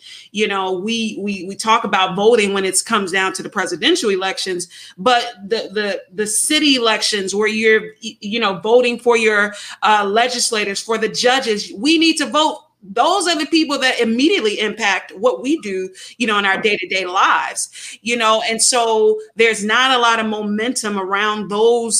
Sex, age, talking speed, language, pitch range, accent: female, 30-49, 180 wpm, English, 200-240 Hz, American